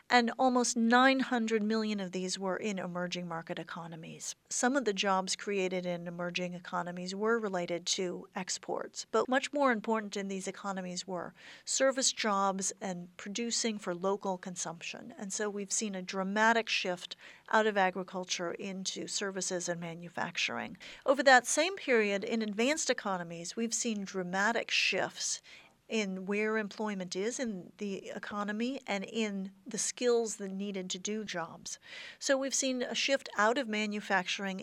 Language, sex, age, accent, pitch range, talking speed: English, female, 40-59, American, 185-230 Hz, 150 wpm